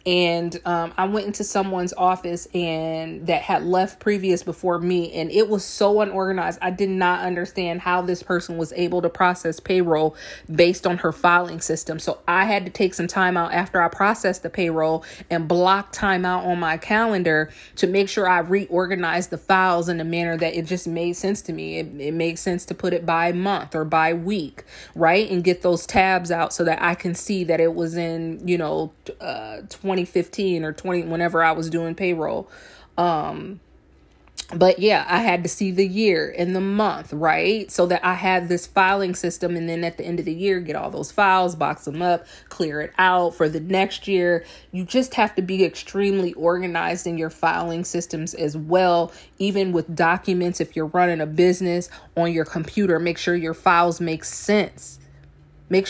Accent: American